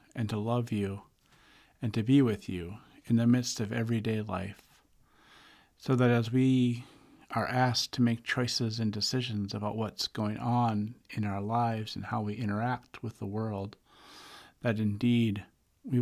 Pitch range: 105-120 Hz